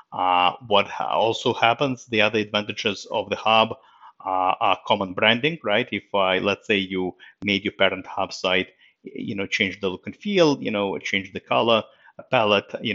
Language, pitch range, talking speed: English, 95-125 Hz, 180 wpm